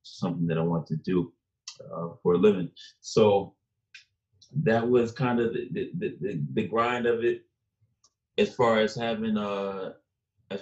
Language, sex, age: English, male, 20-39